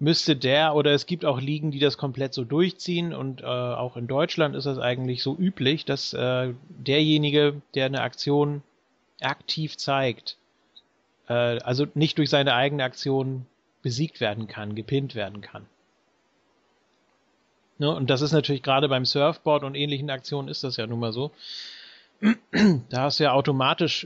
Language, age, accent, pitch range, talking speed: German, 40-59, German, 115-145 Hz, 160 wpm